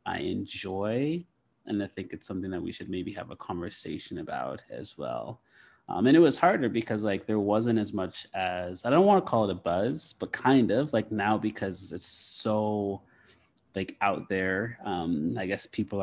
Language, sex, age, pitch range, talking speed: English, male, 30-49, 95-115 Hz, 195 wpm